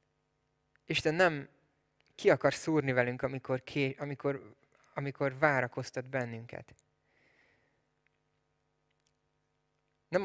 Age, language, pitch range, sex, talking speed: 20-39, Hungarian, 130-155 Hz, male, 65 wpm